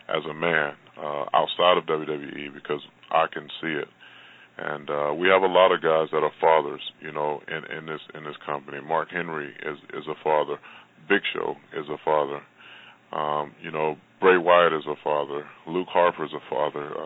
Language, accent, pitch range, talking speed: English, American, 75-85 Hz, 195 wpm